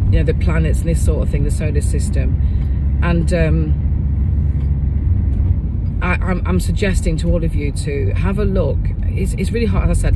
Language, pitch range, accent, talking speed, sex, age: English, 80-90 Hz, British, 195 wpm, female, 40-59